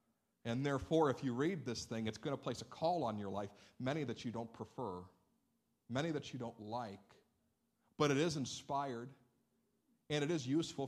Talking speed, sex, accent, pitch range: 190 wpm, male, American, 120-160 Hz